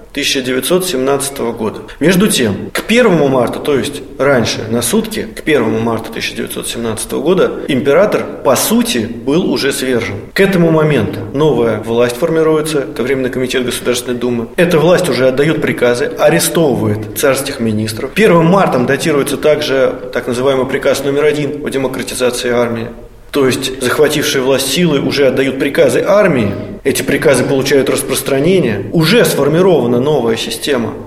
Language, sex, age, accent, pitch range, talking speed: Russian, male, 20-39, native, 120-150 Hz, 135 wpm